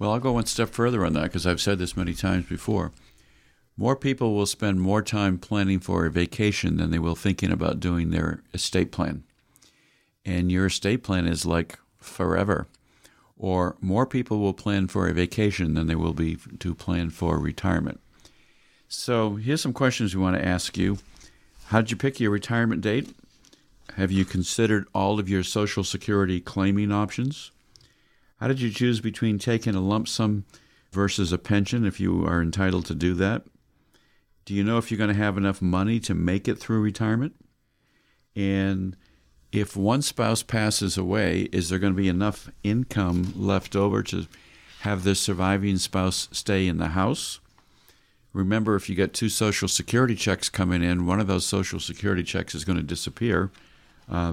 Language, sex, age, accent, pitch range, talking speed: English, male, 50-69, American, 90-105 Hz, 180 wpm